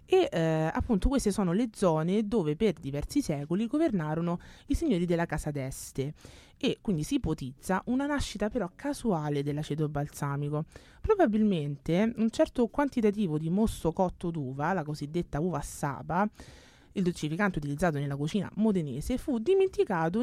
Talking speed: 140 wpm